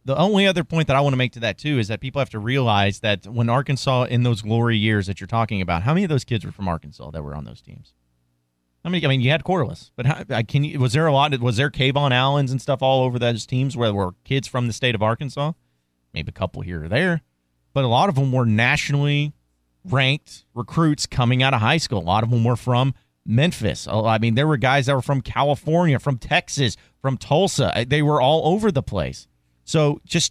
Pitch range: 115-165 Hz